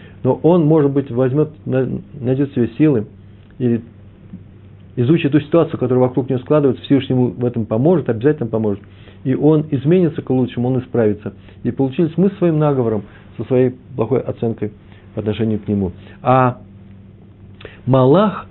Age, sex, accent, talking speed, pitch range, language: 50-69, male, native, 145 wpm, 105-135 Hz, Russian